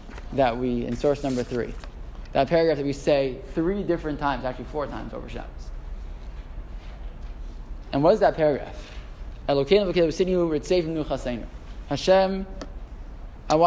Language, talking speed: English, 125 wpm